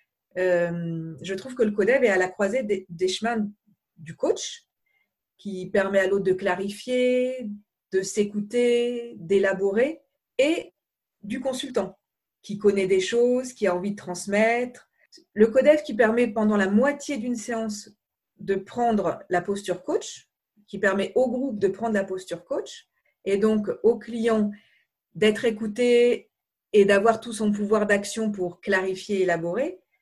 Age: 40-59